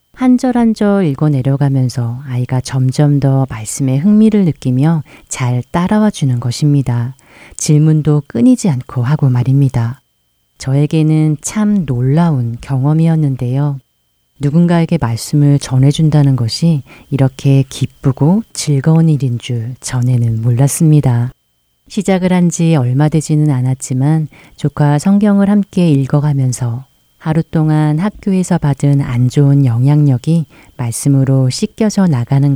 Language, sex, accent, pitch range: Korean, female, native, 130-160 Hz